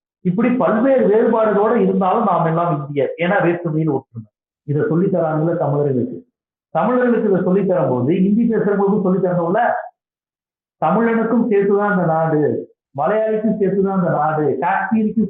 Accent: native